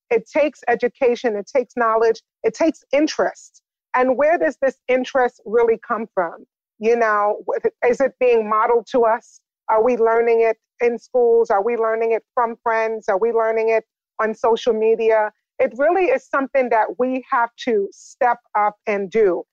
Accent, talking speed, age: American, 170 wpm, 30-49